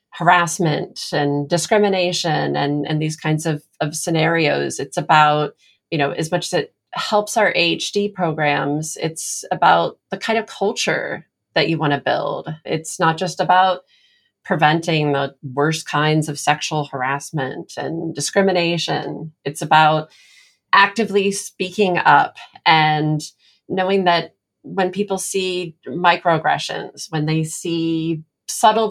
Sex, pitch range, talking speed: female, 155-185 Hz, 130 wpm